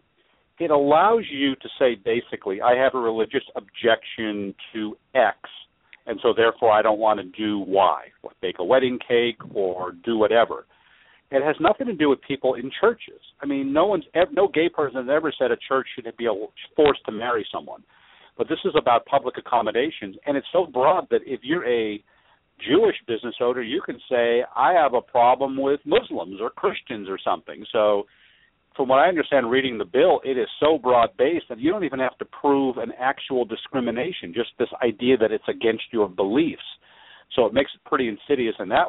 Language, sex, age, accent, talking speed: English, male, 50-69, American, 195 wpm